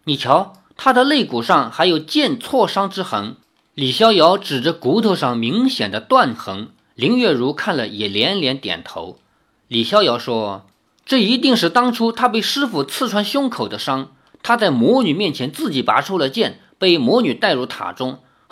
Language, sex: Chinese, male